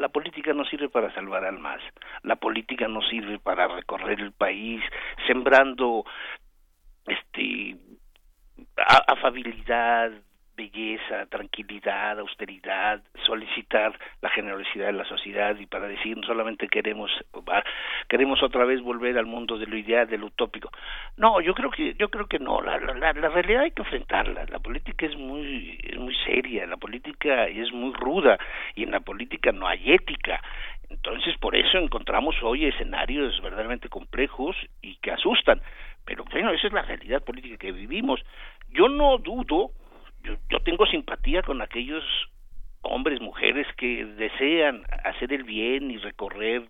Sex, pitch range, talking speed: male, 110-155 Hz, 150 wpm